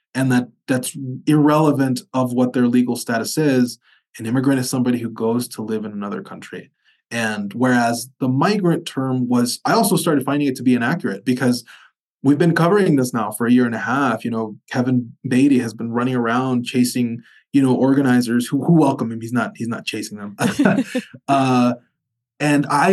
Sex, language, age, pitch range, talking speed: male, English, 20-39, 120-145 Hz, 190 wpm